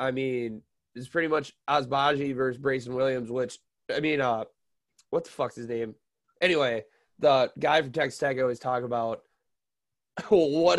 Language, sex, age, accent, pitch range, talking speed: English, male, 20-39, American, 120-155 Hz, 160 wpm